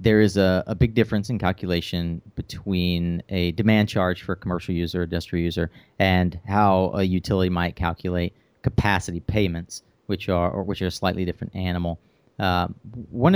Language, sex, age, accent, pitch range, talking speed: English, male, 30-49, American, 90-110 Hz, 170 wpm